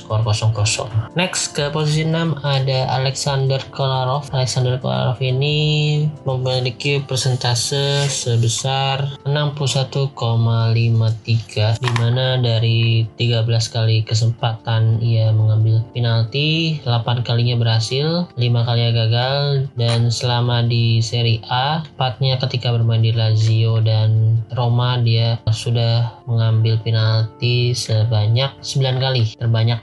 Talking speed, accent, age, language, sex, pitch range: 105 wpm, native, 20-39, Indonesian, male, 115-130 Hz